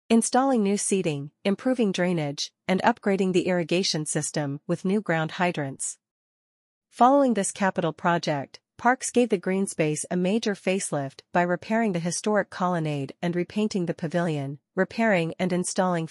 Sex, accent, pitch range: female, American, 165-200 Hz